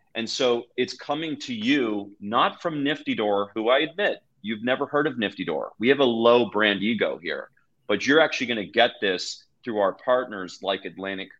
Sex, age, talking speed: male, 30-49, 195 wpm